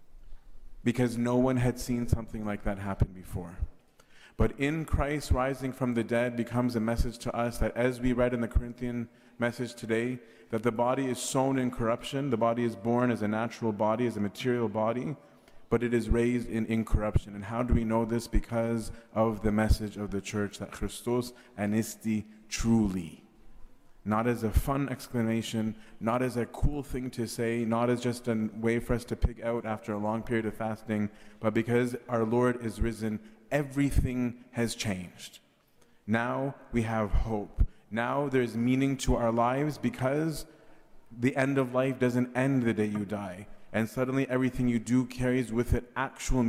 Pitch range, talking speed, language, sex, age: 110-125 Hz, 180 wpm, English, male, 30-49